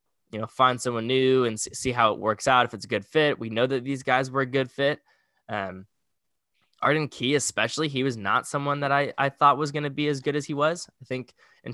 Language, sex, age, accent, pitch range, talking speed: English, male, 10-29, American, 120-150 Hz, 250 wpm